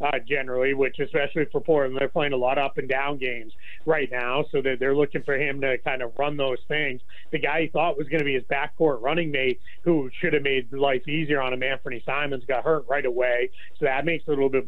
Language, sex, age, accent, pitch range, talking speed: English, male, 30-49, American, 135-165 Hz, 250 wpm